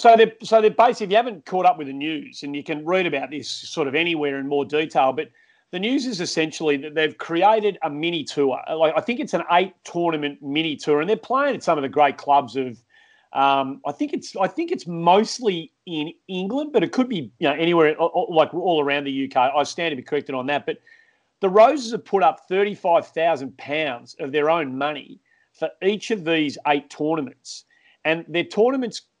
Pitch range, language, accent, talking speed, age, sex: 145-185 Hz, English, Australian, 220 wpm, 30-49, male